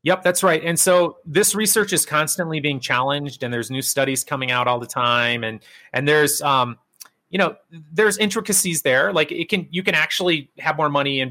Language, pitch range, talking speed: English, 130-170 Hz, 205 wpm